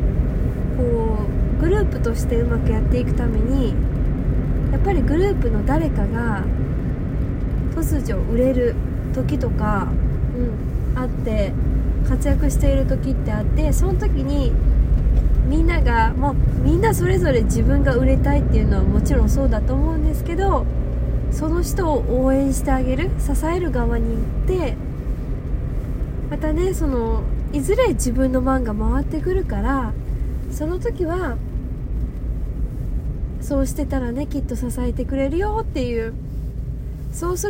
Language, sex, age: Japanese, female, 20-39